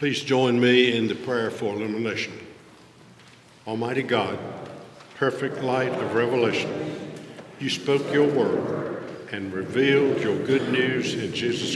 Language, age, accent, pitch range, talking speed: English, 60-79, American, 120-140 Hz, 130 wpm